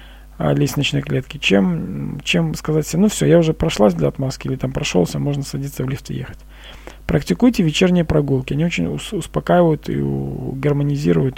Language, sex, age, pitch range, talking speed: Russian, male, 40-59, 125-170 Hz, 160 wpm